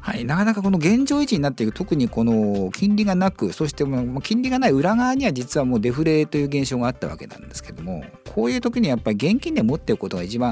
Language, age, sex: Japanese, 50-69, male